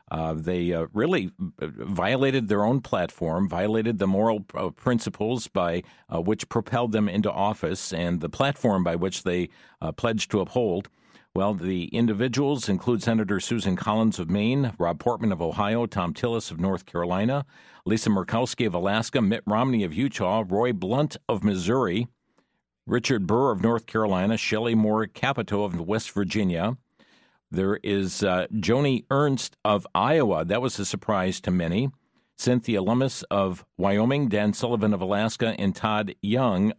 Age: 50-69